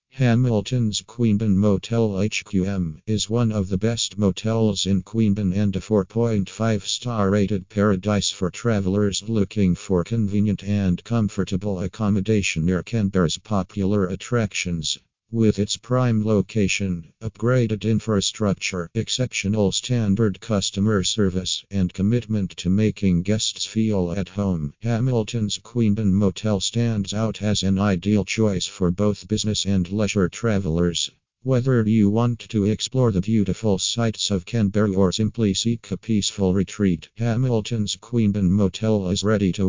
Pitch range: 95-110 Hz